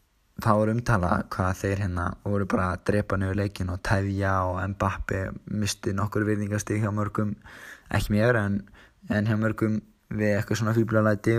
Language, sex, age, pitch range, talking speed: English, male, 20-39, 100-115 Hz, 170 wpm